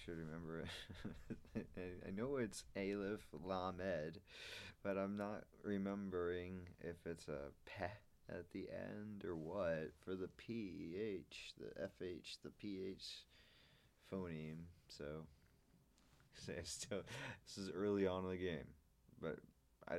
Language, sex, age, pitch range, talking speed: English, male, 30-49, 80-95 Hz, 125 wpm